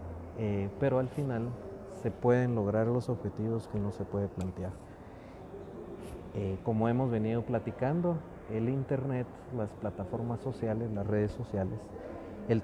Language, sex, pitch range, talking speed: Spanish, male, 100-125 Hz, 135 wpm